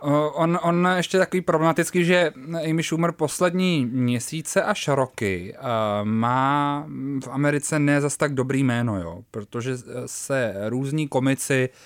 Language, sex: Czech, male